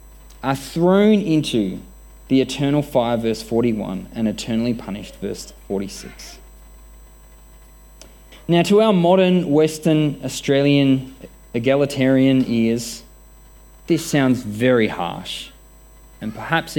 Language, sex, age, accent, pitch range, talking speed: English, male, 20-39, Australian, 115-165 Hz, 95 wpm